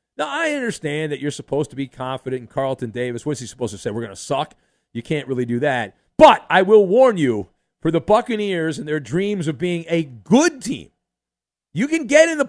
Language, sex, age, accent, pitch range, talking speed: English, male, 40-59, American, 130-205 Hz, 225 wpm